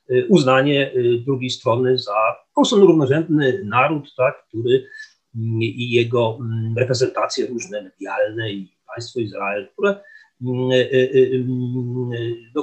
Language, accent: Polish, native